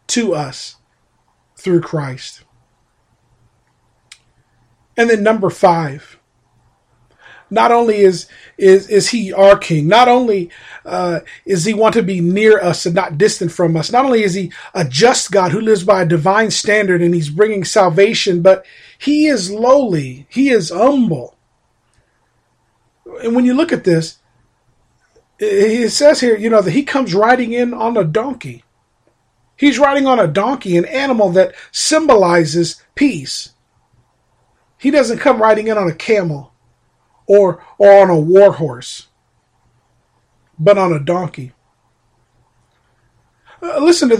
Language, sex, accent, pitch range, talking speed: English, male, American, 155-230 Hz, 140 wpm